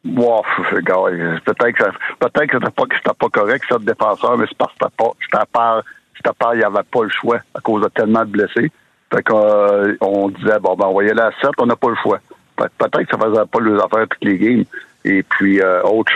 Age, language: 60-79, French